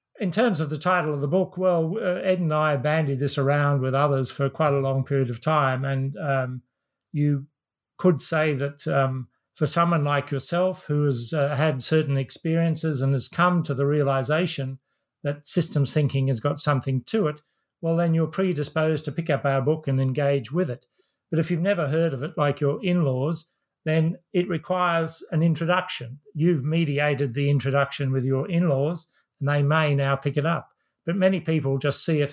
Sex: male